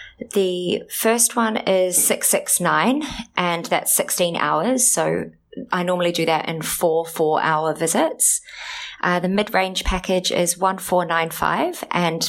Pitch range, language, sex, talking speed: 160-190 Hz, English, female, 120 wpm